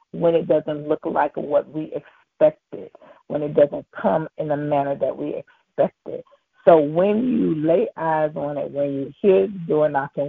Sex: female